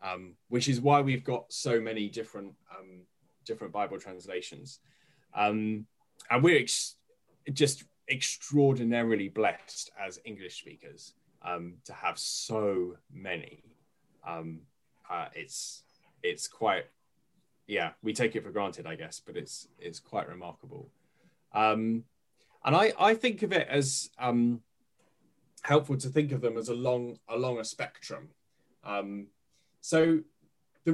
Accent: British